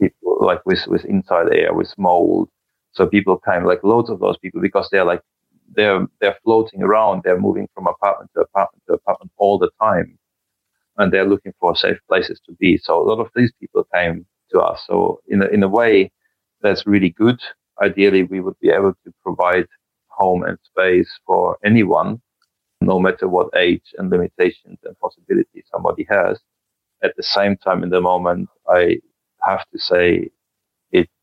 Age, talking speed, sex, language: 30-49, 180 wpm, male, English